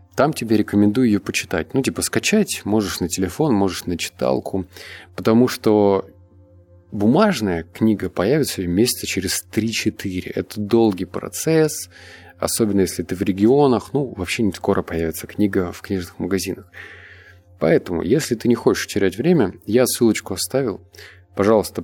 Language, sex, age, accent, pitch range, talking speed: Russian, male, 20-39, native, 90-110 Hz, 135 wpm